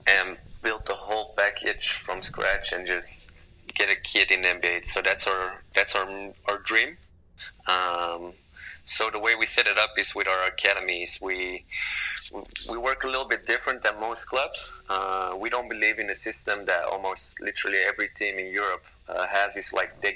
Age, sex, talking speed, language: 30-49, male, 190 wpm, English